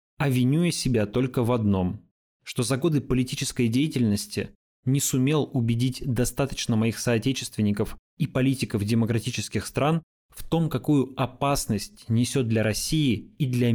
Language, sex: Russian, male